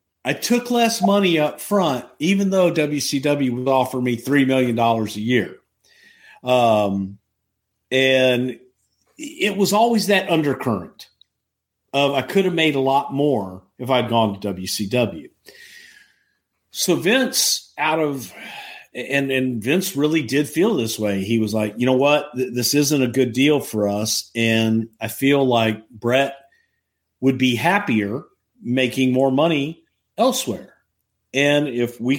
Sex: male